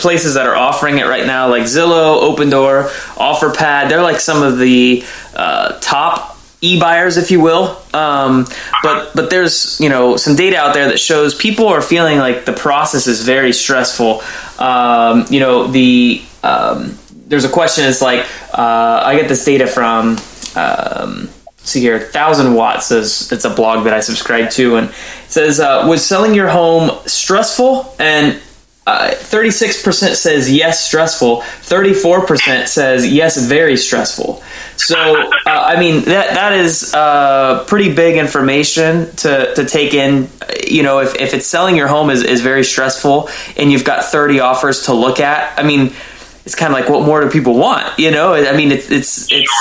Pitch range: 130-165 Hz